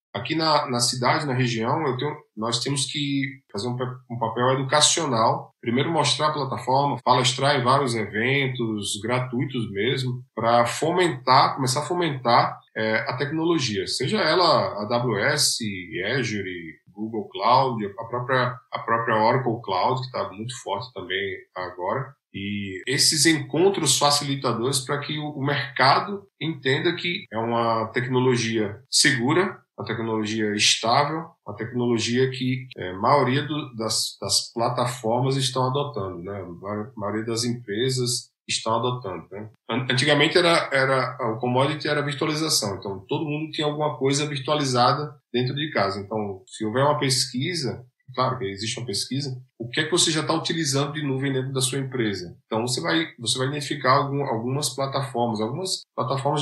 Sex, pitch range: male, 115-140 Hz